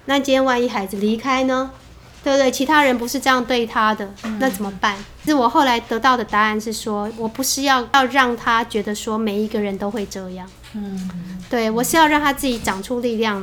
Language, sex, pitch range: Chinese, female, 205-255 Hz